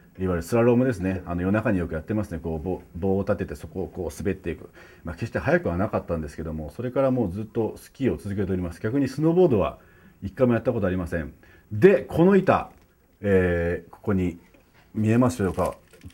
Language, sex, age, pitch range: Japanese, male, 40-59, 85-110 Hz